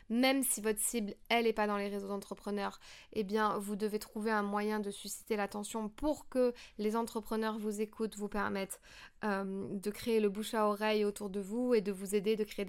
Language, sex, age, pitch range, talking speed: French, female, 20-39, 205-235 Hz, 215 wpm